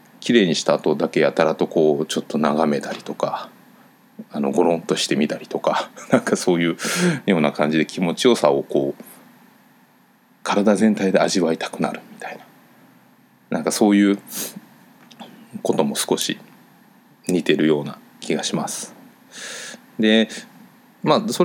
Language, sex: Japanese, male